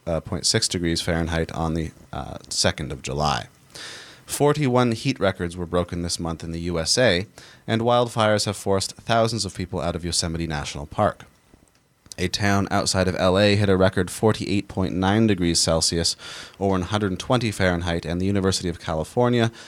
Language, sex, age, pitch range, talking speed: English, male, 30-49, 85-100 Hz, 155 wpm